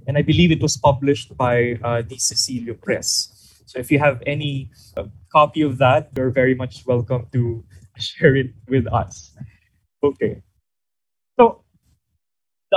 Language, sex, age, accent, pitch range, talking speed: English, male, 20-39, Filipino, 115-150 Hz, 150 wpm